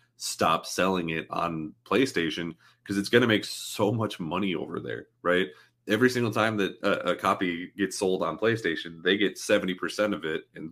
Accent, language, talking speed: American, English, 190 wpm